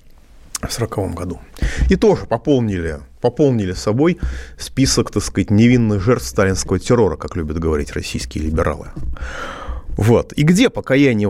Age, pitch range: 30-49, 95-140 Hz